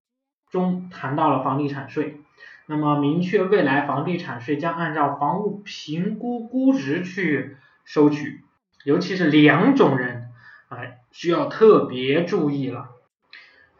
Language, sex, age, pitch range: Chinese, male, 20-39, 140-190 Hz